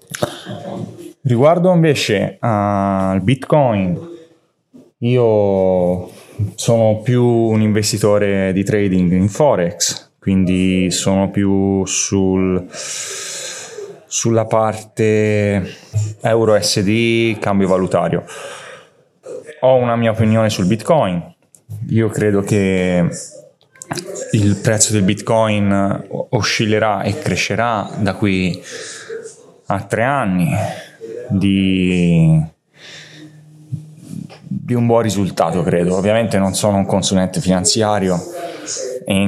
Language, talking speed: Italian, 85 wpm